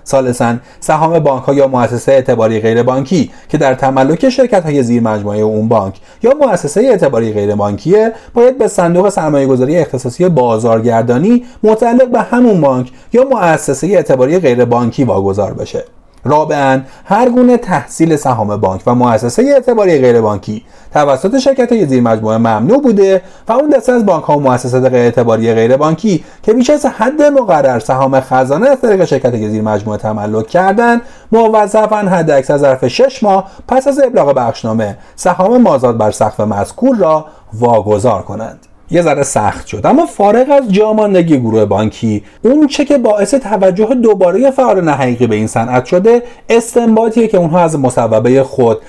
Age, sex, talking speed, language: 30-49, male, 145 wpm, Persian